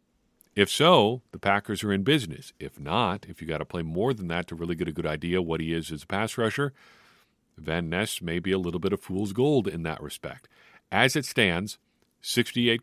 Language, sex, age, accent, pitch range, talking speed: English, male, 50-69, American, 85-105 Hz, 220 wpm